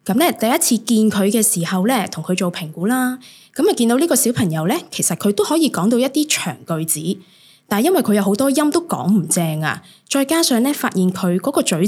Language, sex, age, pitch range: Chinese, female, 20-39, 175-240 Hz